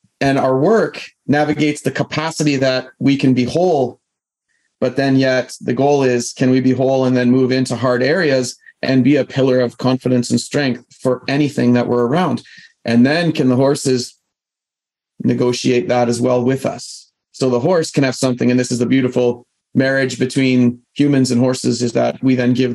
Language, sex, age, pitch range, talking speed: English, male, 30-49, 125-150 Hz, 190 wpm